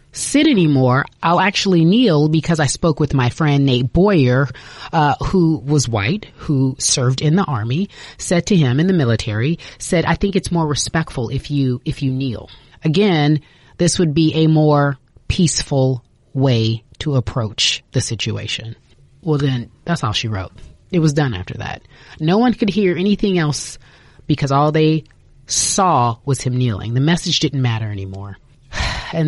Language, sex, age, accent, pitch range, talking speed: English, female, 30-49, American, 125-175 Hz, 165 wpm